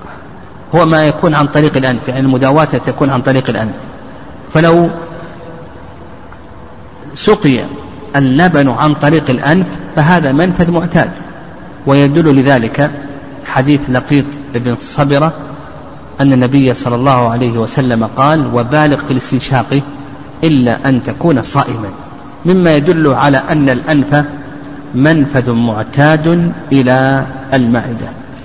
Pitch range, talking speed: 130-155 Hz, 105 wpm